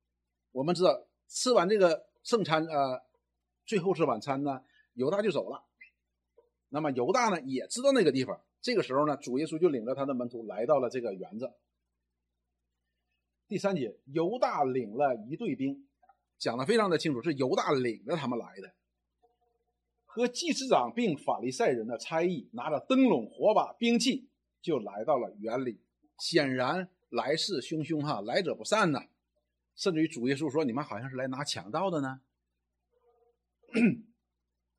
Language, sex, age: Chinese, male, 50-69